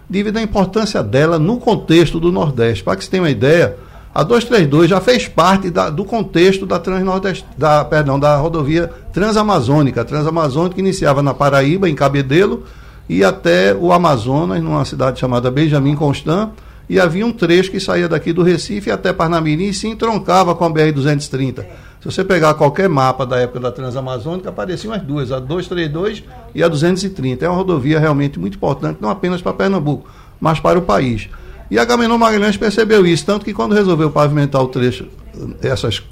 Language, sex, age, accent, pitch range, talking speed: Portuguese, male, 60-79, Brazilian, 140-195 Hz, 180 wpm